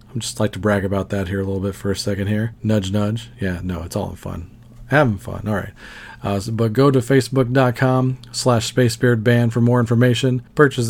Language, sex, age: English, male, 40-59